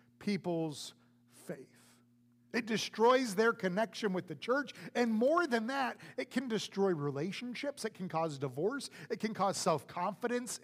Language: English